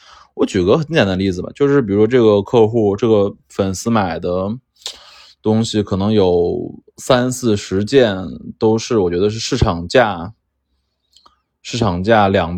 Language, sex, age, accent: Chinese, male, 20-39, native